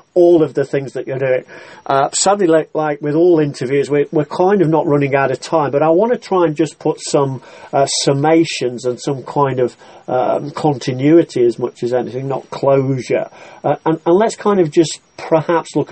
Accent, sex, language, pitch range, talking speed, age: British, male, English, 125-155 Hz, 205 wpm, 40-59